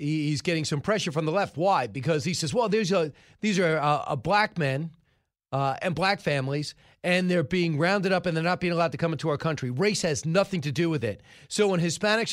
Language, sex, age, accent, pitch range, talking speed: English, male, 40-59, American, 165-220 Hz, 240 wpm